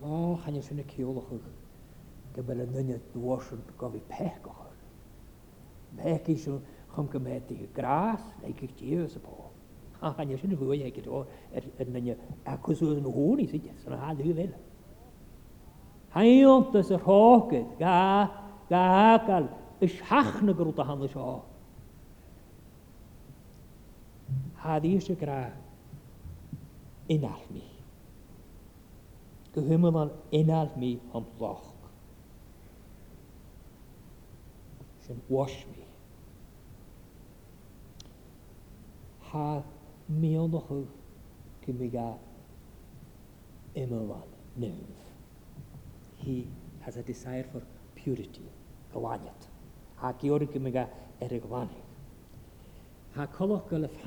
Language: English